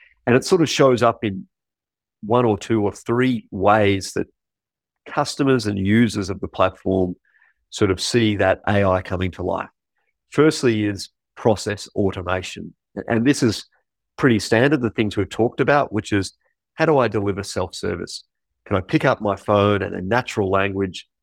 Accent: Australian